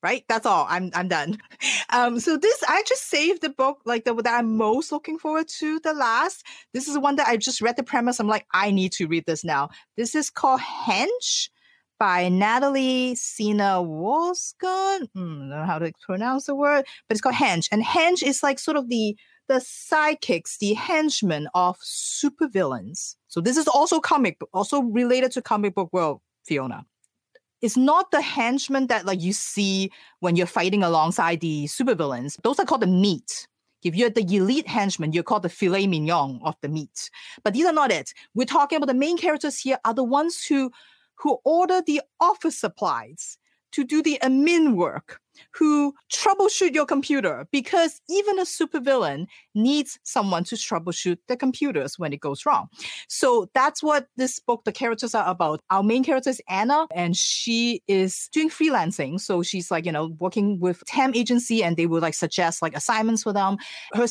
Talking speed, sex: 190 wpm, female